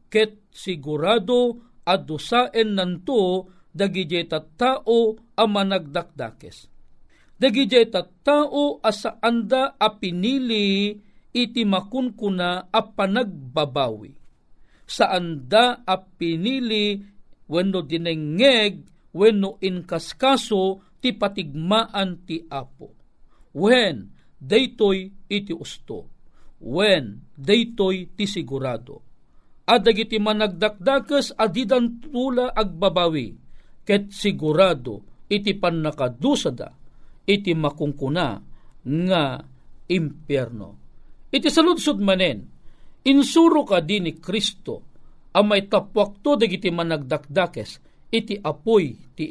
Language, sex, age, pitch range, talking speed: Filipino, male, 50-69, 165-225 Hz, 85 wpm